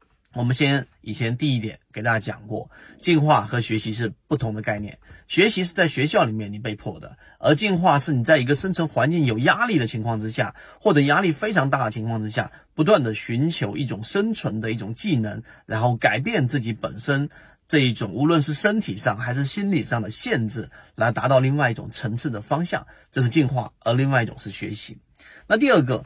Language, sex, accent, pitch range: Chinese, male, native, 115-160 Hz